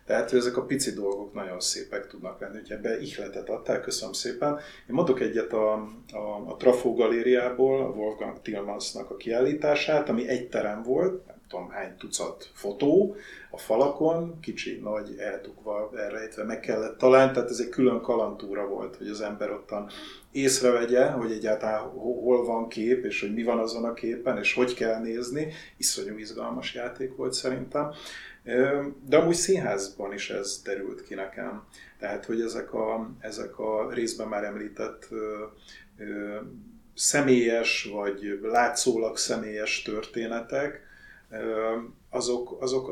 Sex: male